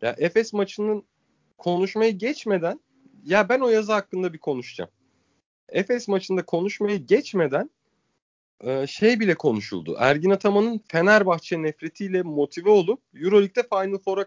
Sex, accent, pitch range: male, native, 140-200 Hz